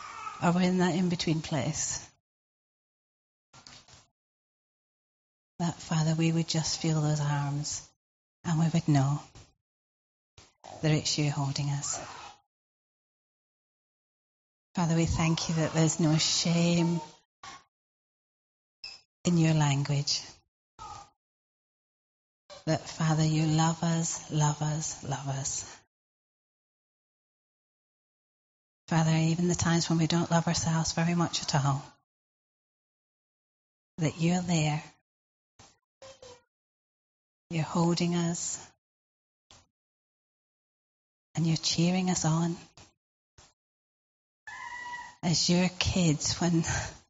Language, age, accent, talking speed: English, 30-49, British, 90 wpm